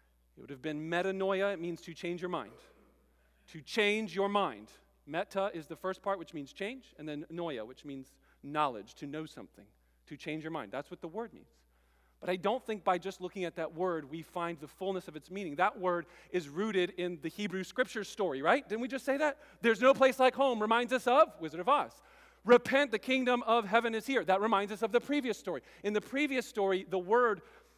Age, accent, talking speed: 40-59, American, 225 wpm